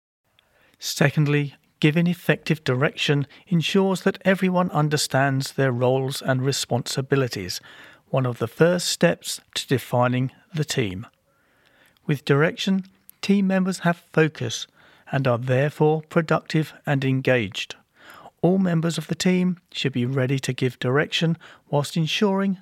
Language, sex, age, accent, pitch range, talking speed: English, male, 40-59, British, 130-165 Hz, 120 wpm